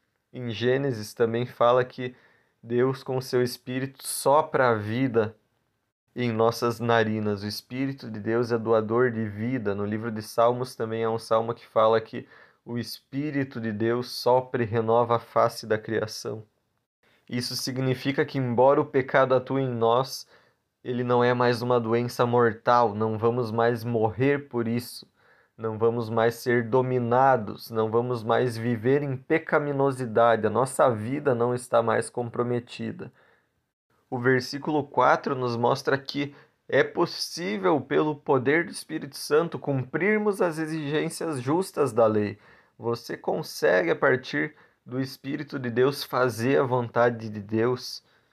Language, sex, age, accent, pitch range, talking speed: Portuguese, male, 20-39, Brazilian, 115-130 Hz, 145 wpm